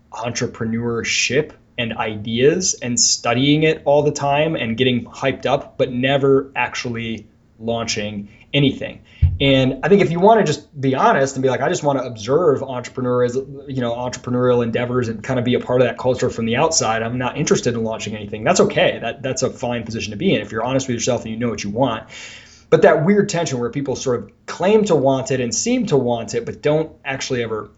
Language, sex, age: English, male, 20-39